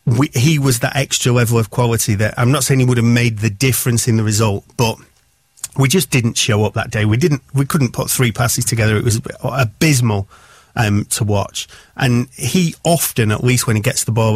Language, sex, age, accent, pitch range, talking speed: English, male, 40-59, British, 115-135 Hz, 220 wpm